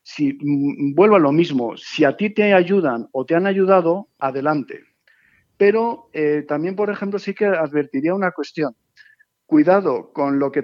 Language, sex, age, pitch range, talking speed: Spanish, male, 50-69, 135-175 Hz, 165 wpm